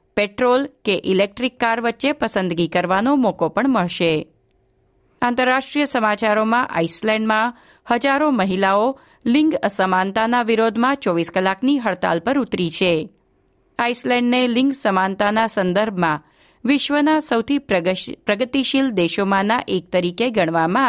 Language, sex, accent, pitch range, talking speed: Gujarati, female, native, 180-245 Hz, 100 wpm